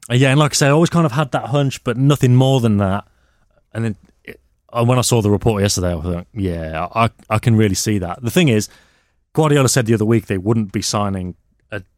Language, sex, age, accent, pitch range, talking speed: English, male, 30-49, British, 95-120 Hz, 245 wpm